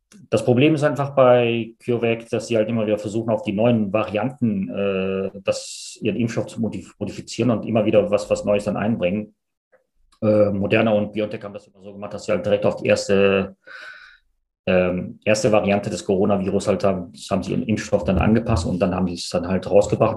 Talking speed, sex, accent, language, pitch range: 205 wpm, male, German, German, 100-120 Hz